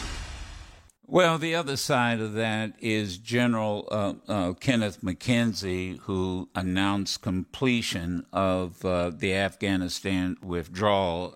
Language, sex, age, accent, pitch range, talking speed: English, male, 60-79, American, 90-115 Hz, 105 wpm